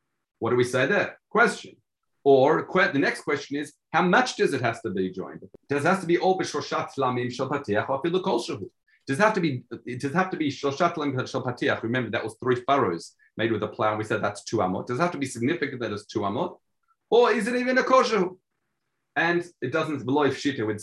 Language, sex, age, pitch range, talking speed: English, male, 40-59, 110-165 Hz, 225 wpm